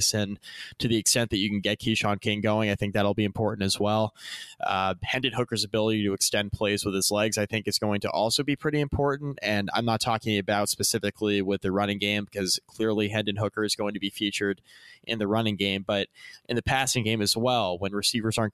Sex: male